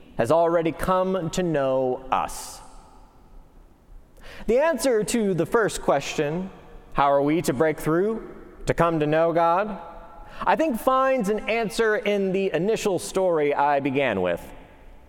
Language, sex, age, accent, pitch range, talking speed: English, male, 30-49, American, 155-225 Hz, 140 wpm